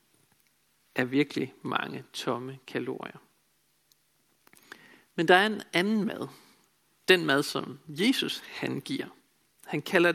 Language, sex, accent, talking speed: Danish, male, native, 110 wpm